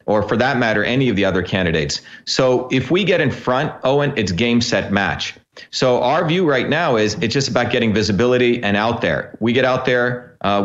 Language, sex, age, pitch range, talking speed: English, male, 40-59, 110-125 Hz, 220 wpm